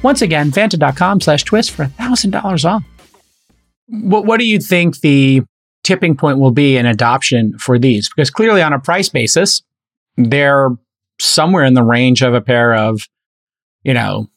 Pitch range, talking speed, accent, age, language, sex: 120-155 Hz, 170 wpm, American, 30-49, English, male